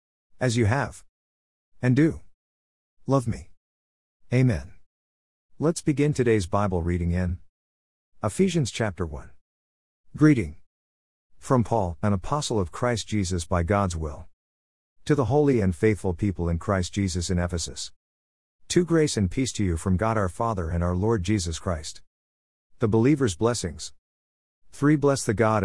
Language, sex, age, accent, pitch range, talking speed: English, male, 50-69, American, 85-110 Hz, 145 wpm